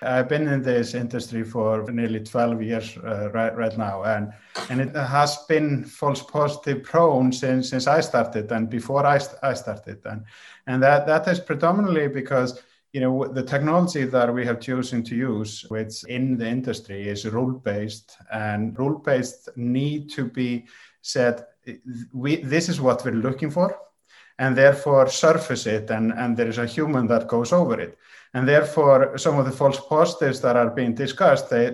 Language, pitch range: English, 110-135 Hz